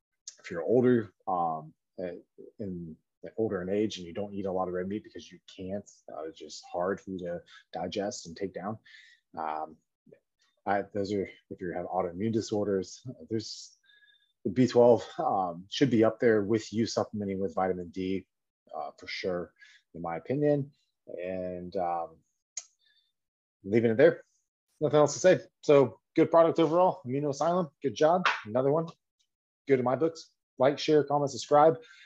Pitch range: 100-155 Hz